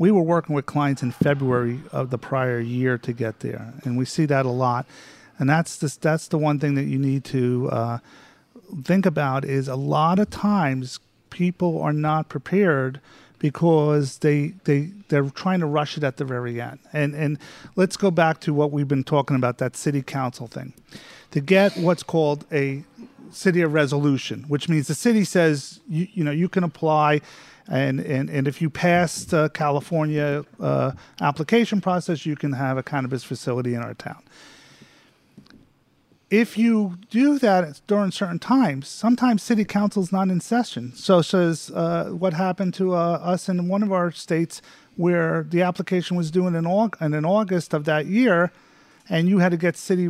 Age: 40-59